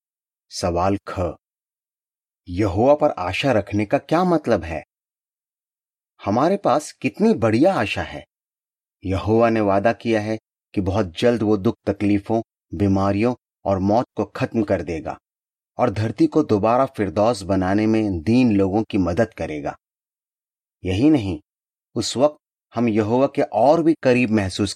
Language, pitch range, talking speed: Hindi, 100-120 Hz, 140 wpm